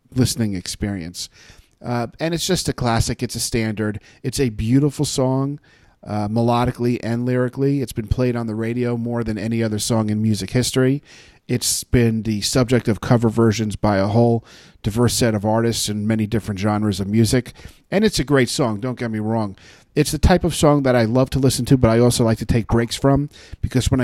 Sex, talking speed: male, 205 wpm